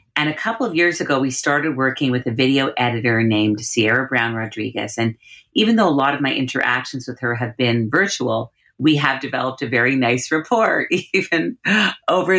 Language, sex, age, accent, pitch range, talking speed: English, female, 40-59, American, 125-170 Hz, 190 wpm